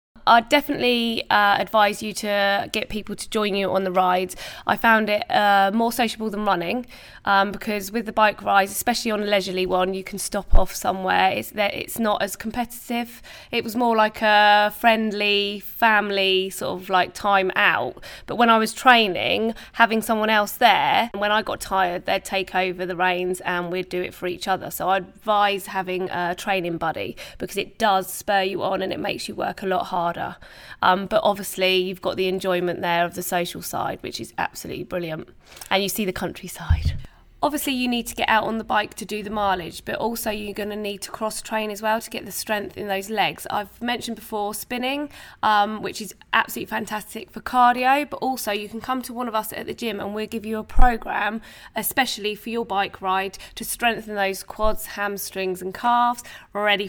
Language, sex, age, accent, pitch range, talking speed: English, female, 20-39, British, 190-225 Hz, 205 wpm